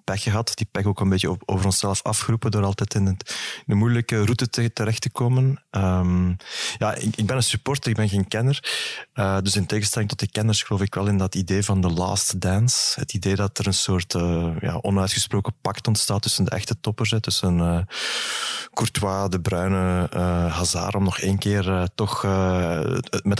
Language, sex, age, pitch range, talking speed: Dutch, male, 20-39, 95-110 Hz, 190 wpm